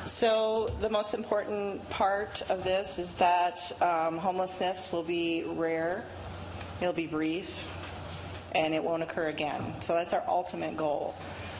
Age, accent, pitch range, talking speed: 40-59, American, 160-190 Hz, 145 wpm